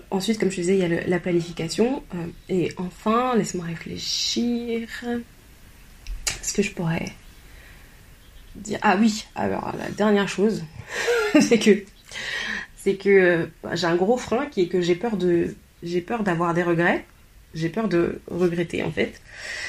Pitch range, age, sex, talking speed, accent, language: 175-205 Hz, 20-39, female, 160 wpm, French, French